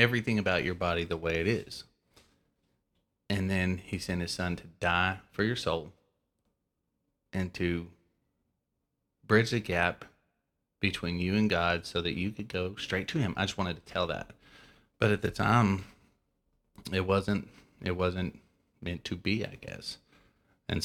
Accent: American